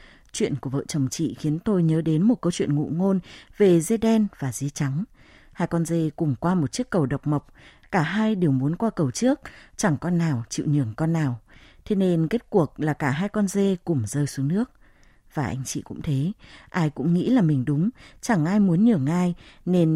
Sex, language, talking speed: female, Vietnamese, 225 wpm